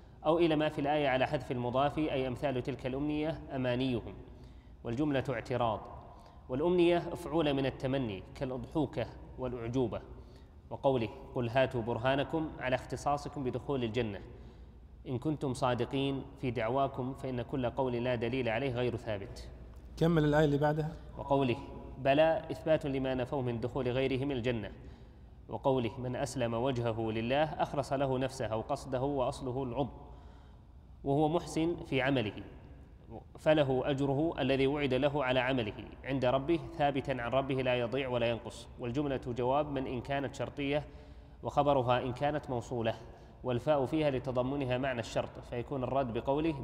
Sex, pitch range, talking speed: male, 120-140 Hz, 135 wpm